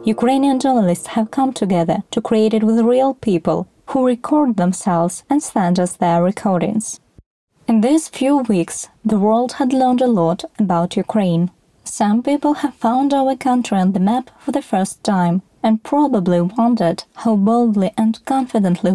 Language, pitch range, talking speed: Ukrainian, 190-255 Hz, 160 wpm